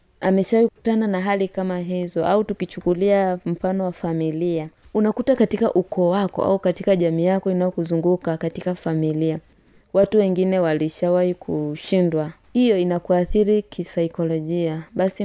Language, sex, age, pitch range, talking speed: Swahili, female, 20-39, 170-200 Hz, 120 wpm